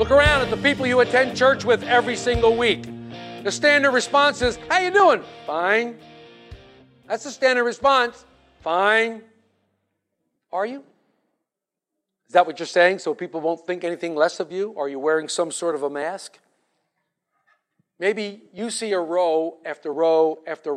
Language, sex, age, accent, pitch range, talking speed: English, male, 50-69, American, 160-250 Hz, 160 wpm